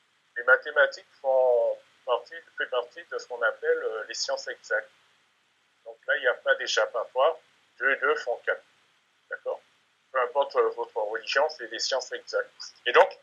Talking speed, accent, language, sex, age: 165 wpm, French, French, male, 60-79